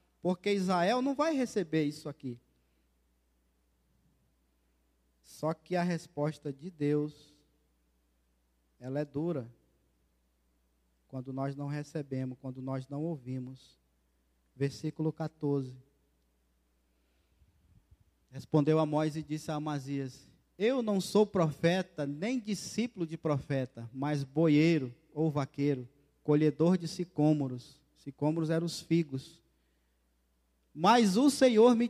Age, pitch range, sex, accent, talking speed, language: 20-39, 130-185 Hz, male, Brazilian, 105 wpm, Portuguese